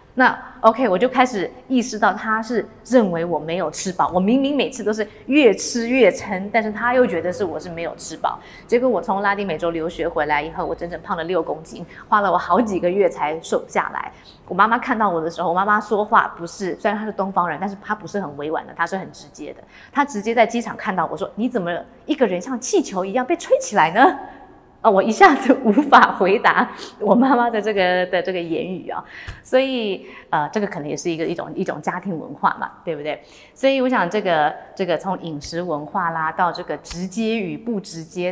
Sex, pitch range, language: female, 175-245 Hz, Chinese